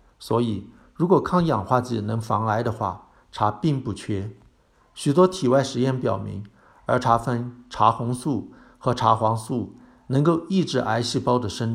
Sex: male